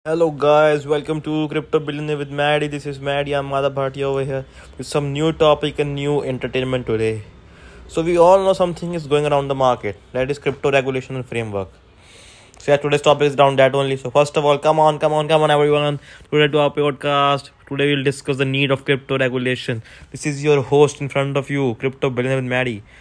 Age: 20-39